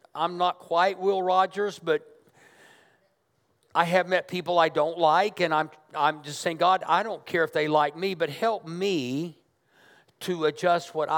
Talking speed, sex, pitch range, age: 170 wpm, male, 150-185 Hz, 50-69